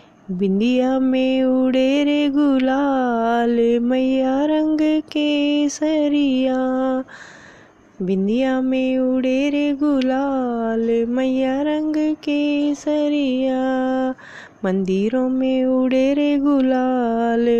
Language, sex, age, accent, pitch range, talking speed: Hindi, female, 20-39, native, 260-305 Hz, 65 wpm